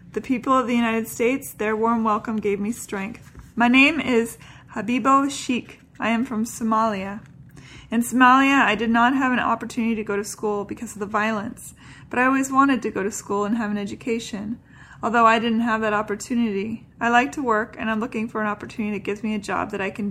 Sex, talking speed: female, 220 wpm